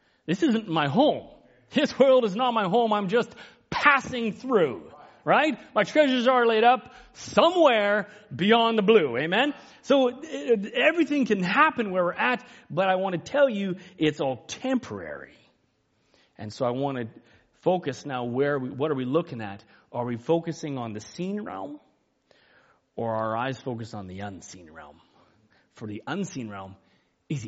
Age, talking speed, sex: 30-49, 170 wpm, male